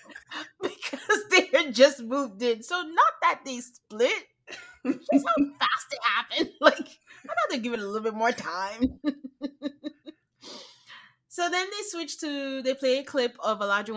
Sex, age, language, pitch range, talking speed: female, 20-39, English, 185-265 Hz, 165 wpm